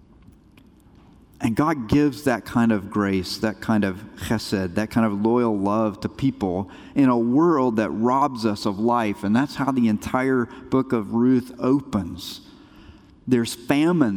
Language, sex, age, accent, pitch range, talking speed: English, male, 50-69, American, 105-135 Hz, 155 wpm